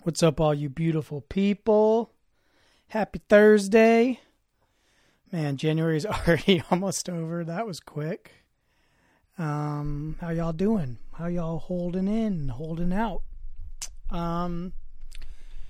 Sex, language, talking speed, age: male, English, 105 wpm, 30-49